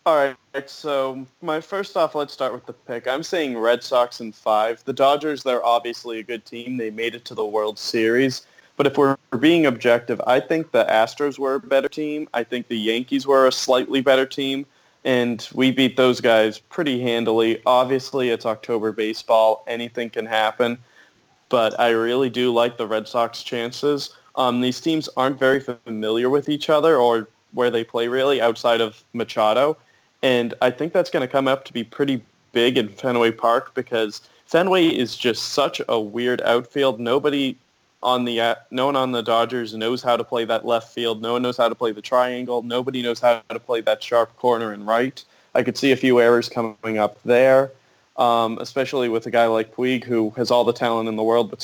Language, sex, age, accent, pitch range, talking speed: English, male, 20-39, American, 115-135 Hz, 200 wpm